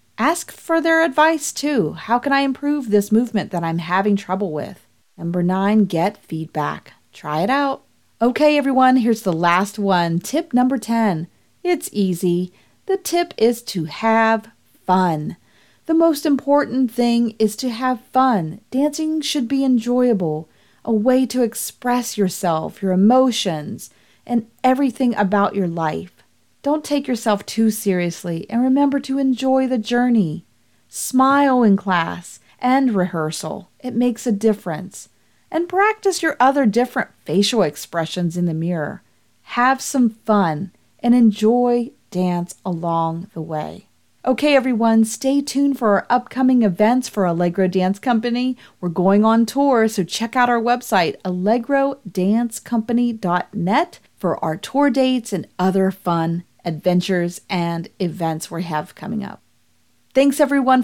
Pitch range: 185-260 Hz